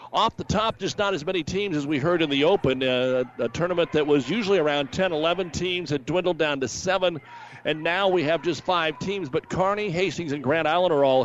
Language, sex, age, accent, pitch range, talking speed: English, male, 50-69, American, 140-170 Hz, 235 wpm